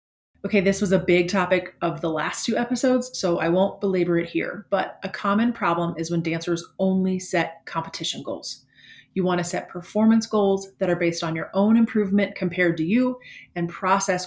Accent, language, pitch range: American, English, 170-205 Hz